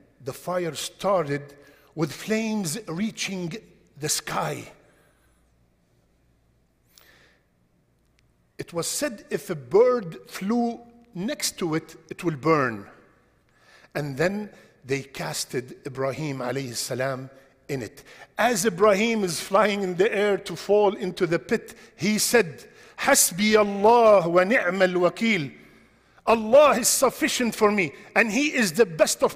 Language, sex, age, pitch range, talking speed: English, male, 50-69, 165-245 Hz, 120 wpm